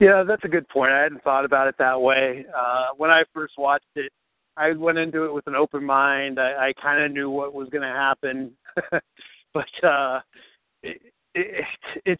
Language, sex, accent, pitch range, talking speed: English, male, American, 130-150 Hz, 190 wpm